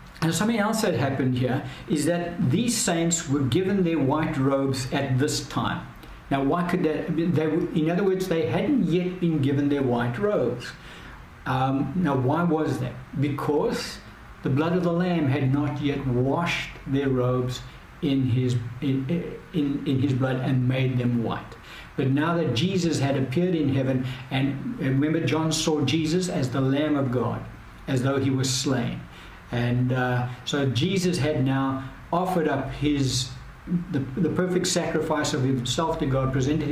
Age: 60-79